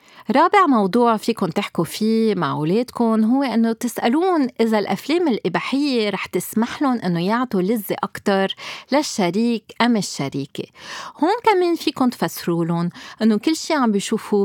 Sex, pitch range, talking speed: female, 175-250 Hz, 130 wpm